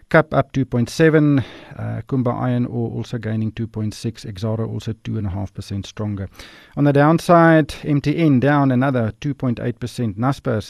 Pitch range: 110-145 Hz